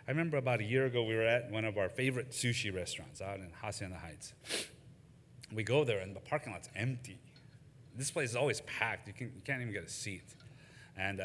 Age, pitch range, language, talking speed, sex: 30-49, 105-150 Hz, English, 220 wpm, male